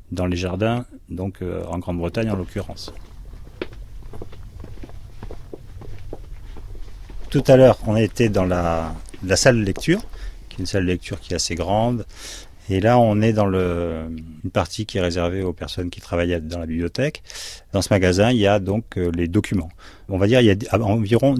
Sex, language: male, French